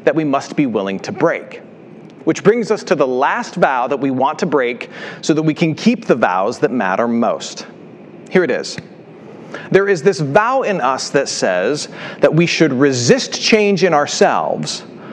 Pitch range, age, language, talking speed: 160-225 Hz, 40-59, English, 185 wpm